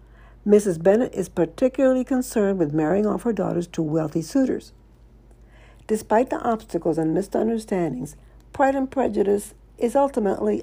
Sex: female